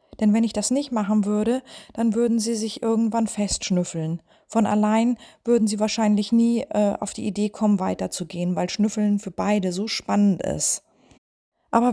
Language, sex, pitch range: German, female, 190-235 Hz